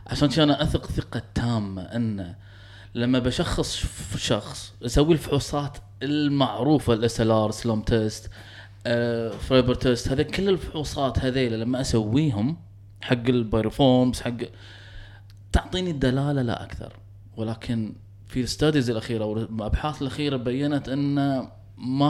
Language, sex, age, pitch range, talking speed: Arabic, male, 20-39, 105-140 Hz, 110 wpm